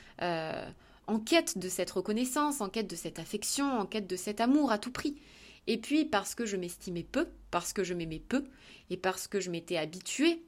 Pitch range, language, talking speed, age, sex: 175-250 Hz, French, 210 wpm, 20-39, female